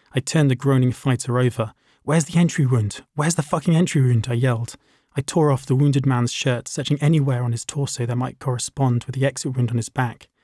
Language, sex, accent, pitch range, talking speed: English, male, British, 125-140 Hz, 225 wpm